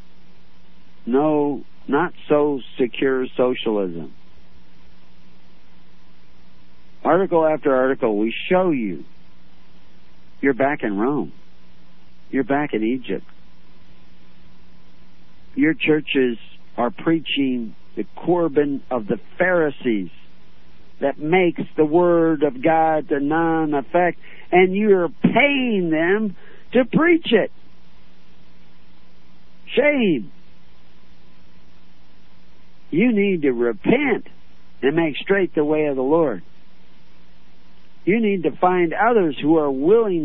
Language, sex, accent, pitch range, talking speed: English, male, American, 130-190 Hz, 95 wpm